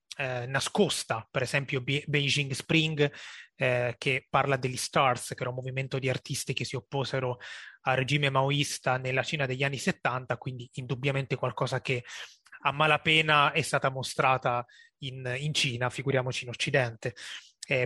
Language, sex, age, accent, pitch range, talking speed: Italian, male, 20-39, native, 130-150 Hz, 150 wpm